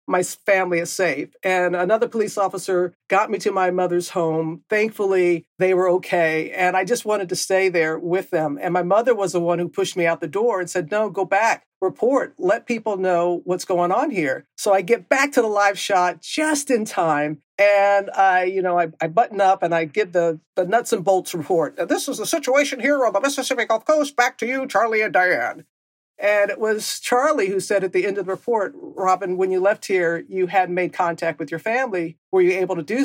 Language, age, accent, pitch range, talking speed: English, 50-69, American, 180-225 Hz, 225 wpm